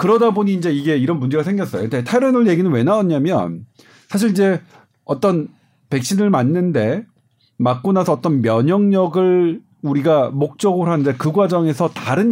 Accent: native